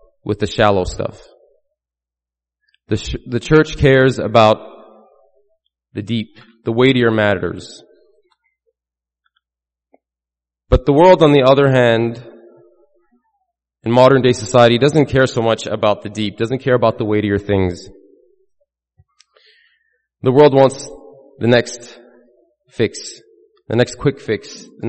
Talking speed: 120 wpm